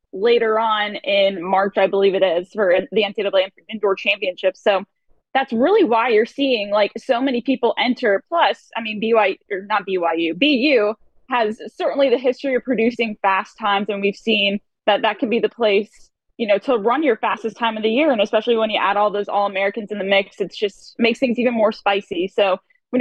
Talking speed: 210 wpm